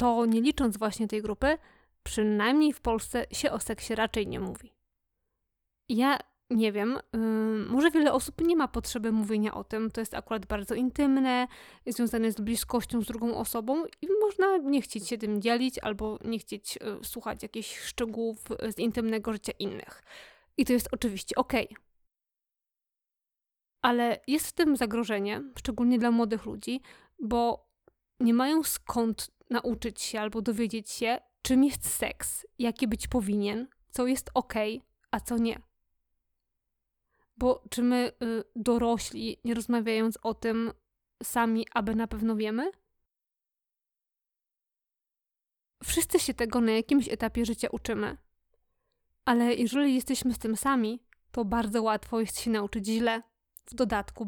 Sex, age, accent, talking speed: female, 20-39, native, 140 wpm